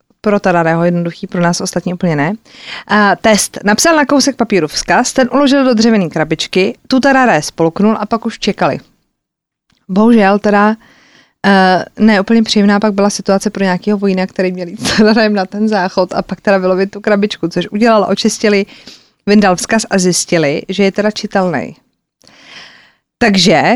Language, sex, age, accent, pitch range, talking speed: Czech, female, 20-39, native, 190-235 Hz, 155 wpm